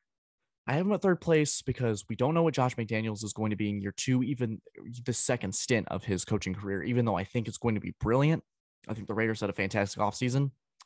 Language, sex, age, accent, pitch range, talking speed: English, male, 20-39, American, 100-125 Hz, 250 wpm